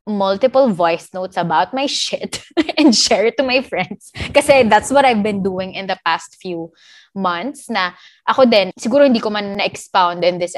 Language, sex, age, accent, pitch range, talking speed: English, female, 20-39, Filipino, 175-220 Hz, 195 wpm